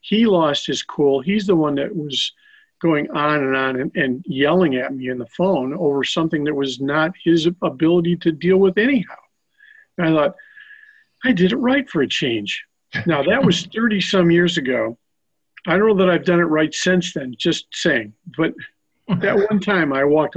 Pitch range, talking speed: 140-190 Hz, 195 wpm